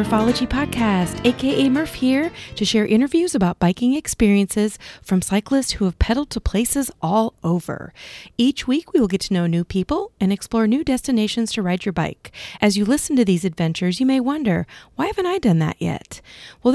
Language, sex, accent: English, female, American